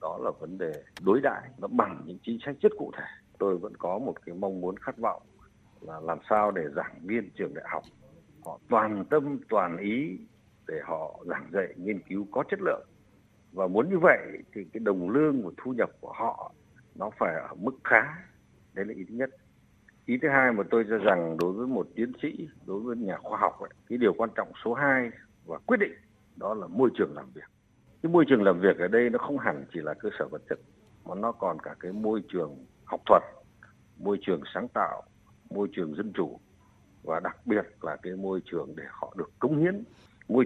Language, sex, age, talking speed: Vietnamese, male, 60-79, 220 wpm